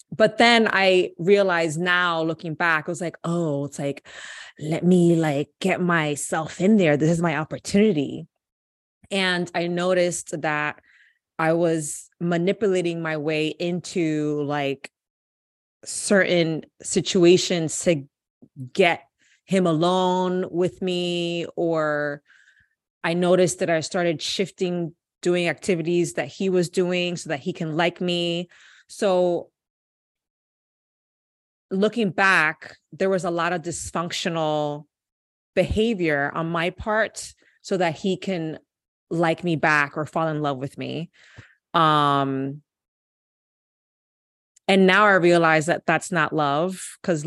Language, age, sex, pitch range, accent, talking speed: English, 20-39, female, 150-180 Hz, American, 125 wpm